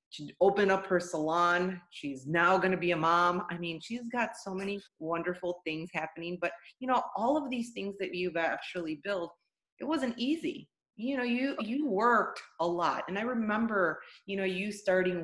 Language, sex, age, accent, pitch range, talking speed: English, female, 30-49, American, 175-225 Hz, 190 wpm